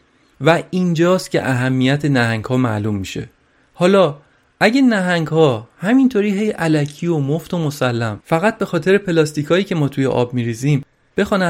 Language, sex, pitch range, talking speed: Persian, male, 135-185 Hz, 155 wpm